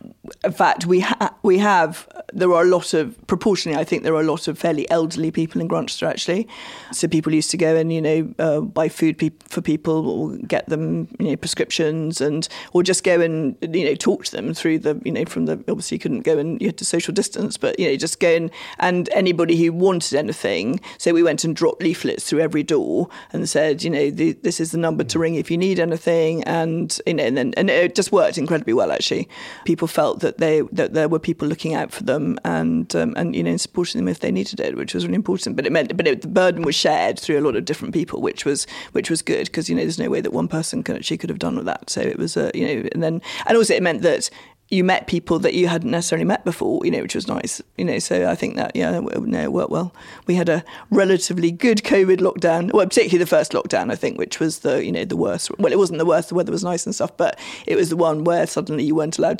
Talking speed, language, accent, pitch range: 265 wpm, English, British, 160-185 Hz